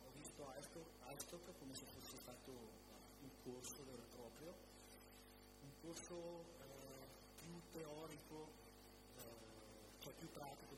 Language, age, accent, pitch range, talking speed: Italian, 50-69, native, 115-150 Hz, 105 wpm